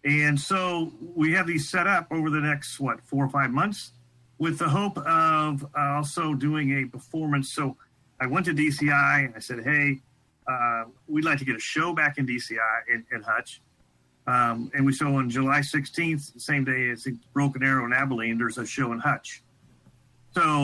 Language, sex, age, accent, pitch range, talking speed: English, male, 40-59, American, 125-150 Hz, 190 wpm